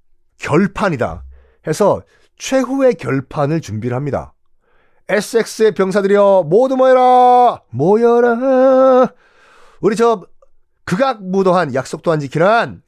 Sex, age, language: male, 40-59, Korean